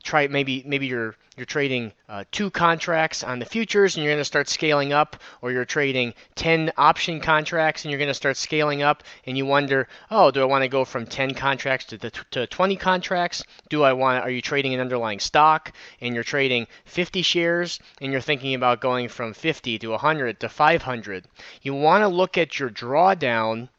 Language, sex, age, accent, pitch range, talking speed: English, male, 30-49, American, 125-160 Hz, 205 wpm